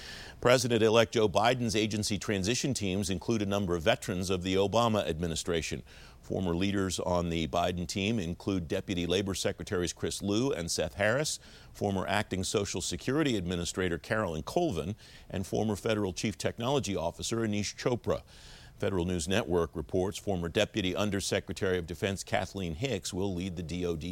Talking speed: 150 wpm